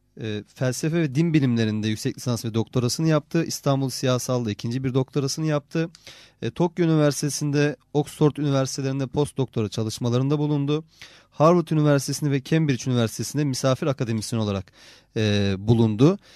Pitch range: 115-145 Hz